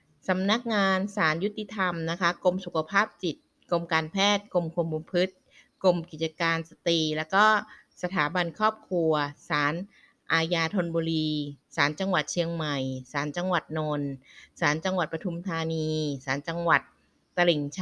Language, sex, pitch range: Thai, female, 155-190 Hz